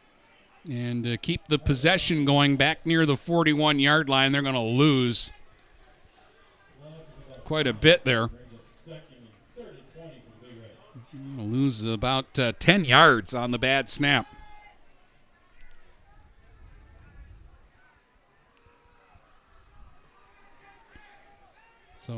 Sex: male